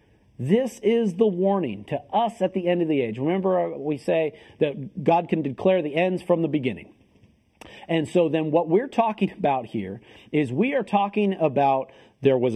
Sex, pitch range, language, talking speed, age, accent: male, 140-195 Hz, English, 185 wpm, 40-59, American